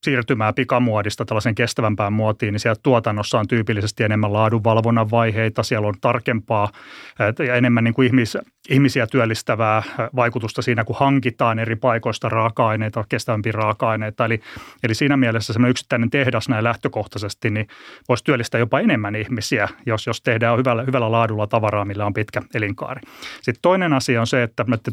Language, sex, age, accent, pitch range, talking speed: Finnish, male, 30-49, native, 110-125 Hz, 160 wpm